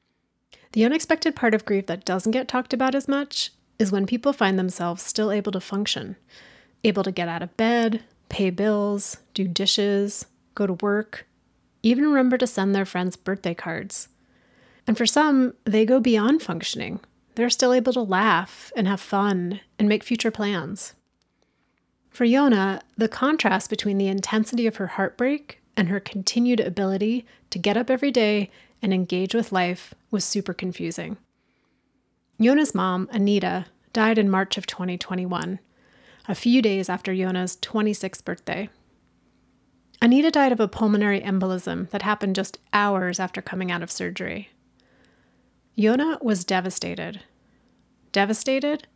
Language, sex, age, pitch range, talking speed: English, female, 30-49, 190-240 Hz, 150 wpm